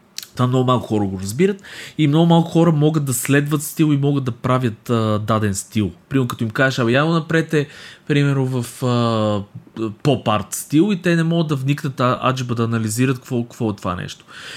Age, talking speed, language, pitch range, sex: 20-39, 200 wpm, Bulgarian, 110-140 Hz, male